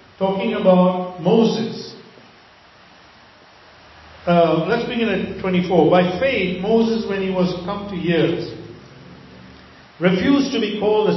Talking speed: 125 wpm